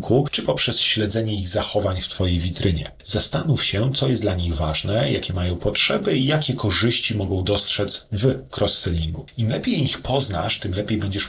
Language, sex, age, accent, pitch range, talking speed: Polish, male, 40-59, native, 95-125 Hz, 170 wpm